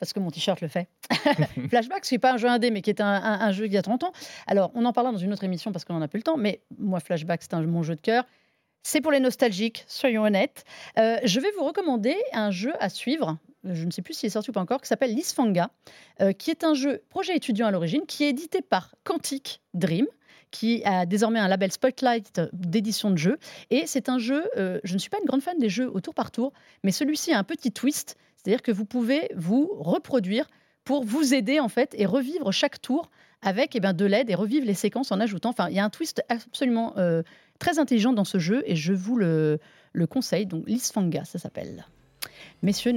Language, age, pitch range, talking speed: French, 40-59, 190-260 Hz, 245 wpm